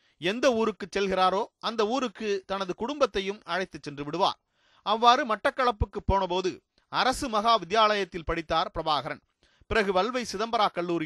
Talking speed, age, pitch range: 110 wpm, 40-59, 190-245 Hz